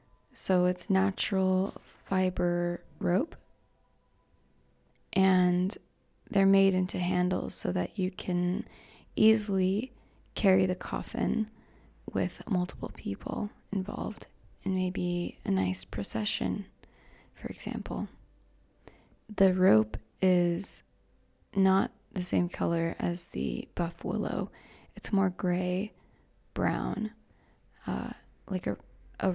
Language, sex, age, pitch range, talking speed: English, female, 20-39, 175-195 Hz, 100 wpm